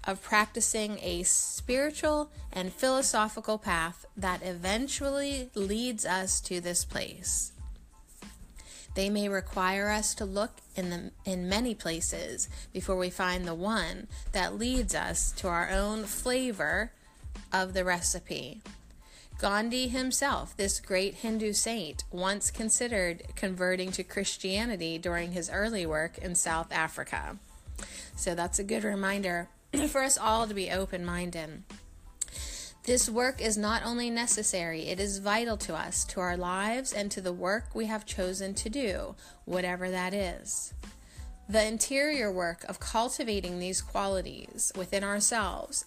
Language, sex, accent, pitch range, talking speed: English, female, American, 180-220 Hz, 135 wpm